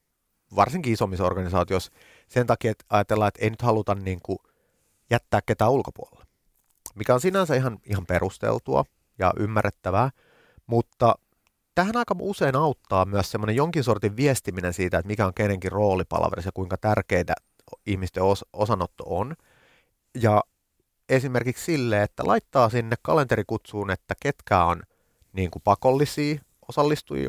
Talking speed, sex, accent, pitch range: 135 wpm, male, native, 95-125 Hz